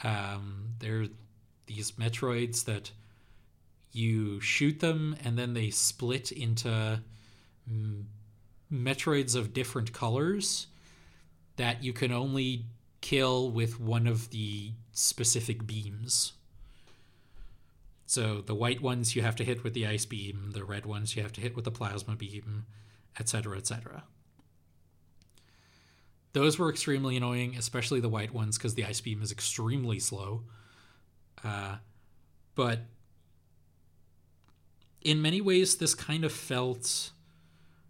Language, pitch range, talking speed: English, 100-125 Hz, 120 wpm